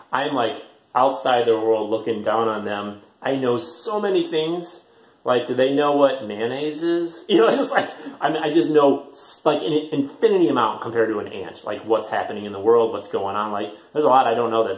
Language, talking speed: English, 225 wpm